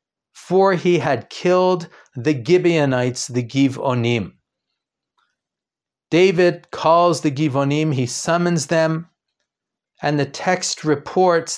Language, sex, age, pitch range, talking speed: English, male, 40-59, 130-170 Hz, 100 wpm